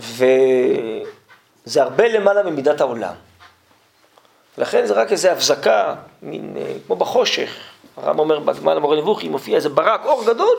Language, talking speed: Hebrew, 135 wpm